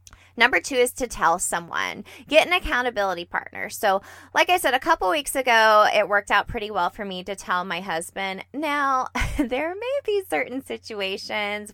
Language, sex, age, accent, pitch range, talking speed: English, female, 20-39, American, 180-270 Hz, 180 wpm